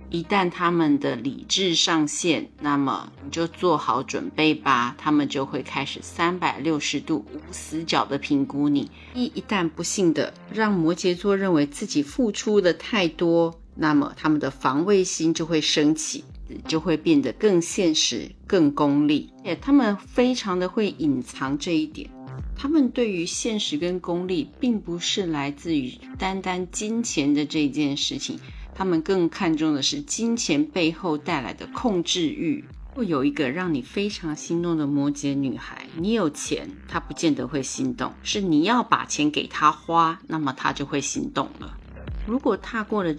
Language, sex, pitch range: Chinese, female, 150-205 Hz